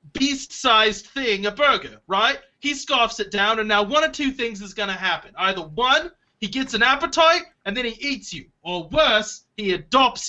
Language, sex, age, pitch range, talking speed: English, male, 30-49, 210-270 Hz, 200 wpm